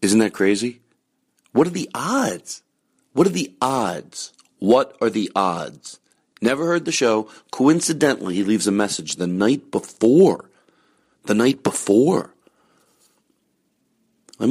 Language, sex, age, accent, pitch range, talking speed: English, male, 40-59, American, 90-110 Hz, 130 wpm